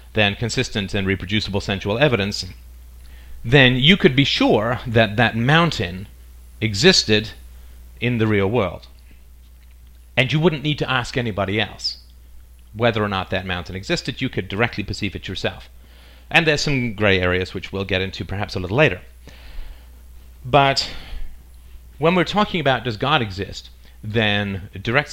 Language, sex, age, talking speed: English, male, 40-59, 150 wpm